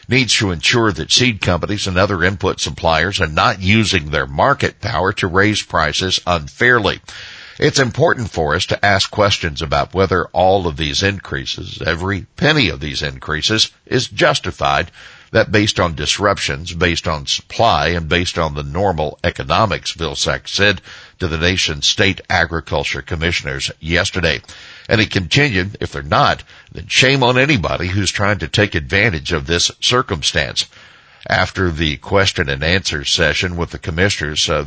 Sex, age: male, 60-79